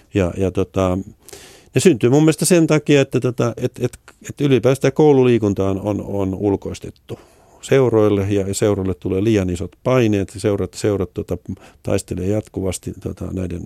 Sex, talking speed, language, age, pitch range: male, 145 wpm, Finnish, 50-69, 95-110 Hz